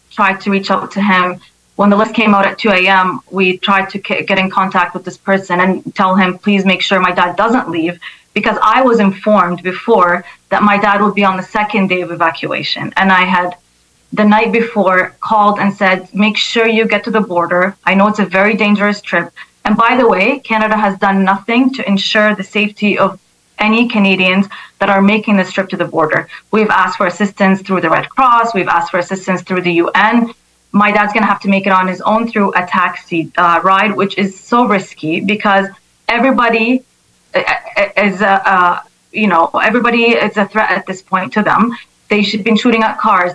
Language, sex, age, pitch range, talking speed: English, female, 30-49, 185-215 Hz, 210 wpm